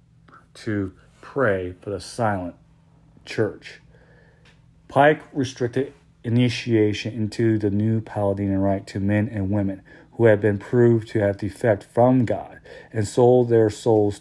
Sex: male